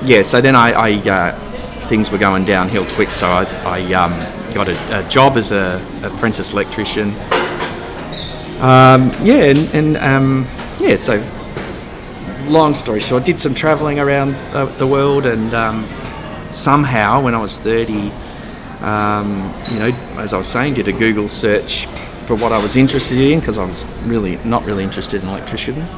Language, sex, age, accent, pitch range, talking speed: English, male, 30-49, Australian, 105-135 Hz, 170 wpm